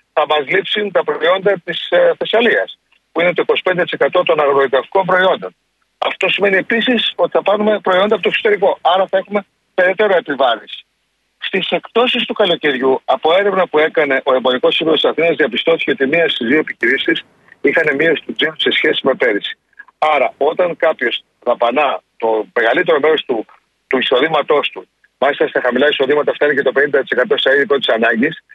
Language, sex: Greek, male